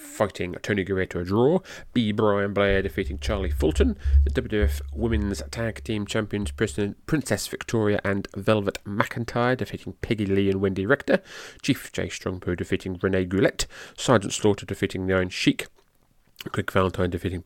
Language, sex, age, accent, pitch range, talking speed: English, male, 30-49, British, 95-120 Hz, 150 wpm